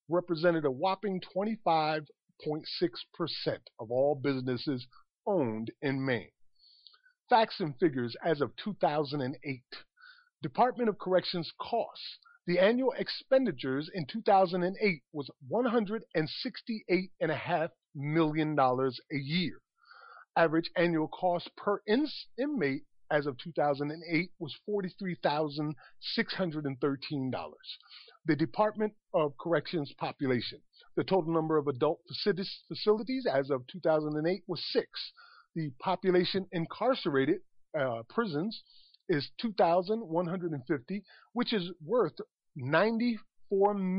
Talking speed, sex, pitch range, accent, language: 95 wpm, male, 145-205 Hz, American, English